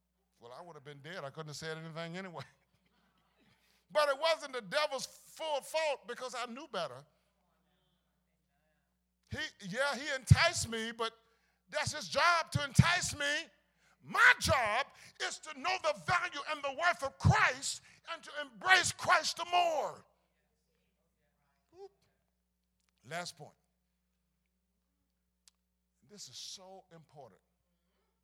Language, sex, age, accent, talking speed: English, male, 50-69, American, 125 wpm